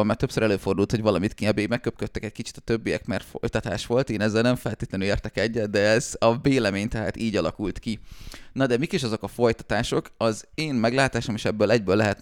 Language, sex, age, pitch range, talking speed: Hungarian, male, 30-49, 100-120 Hz, 205 wpm